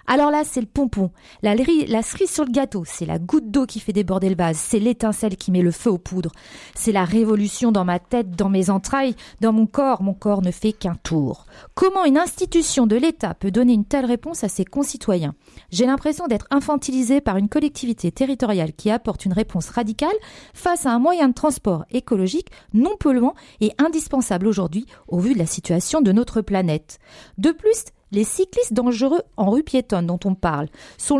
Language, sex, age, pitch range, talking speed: French, female, 40-59, 195-280 Hz, 200 wpm